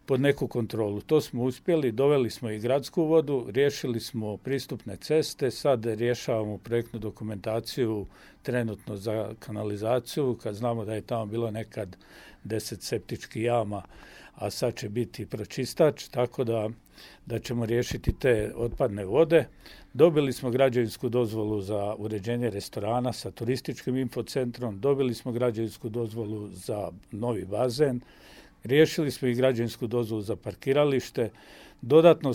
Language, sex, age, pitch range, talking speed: Croatian, male, 50-69, 110-130 Hz, 130 wpm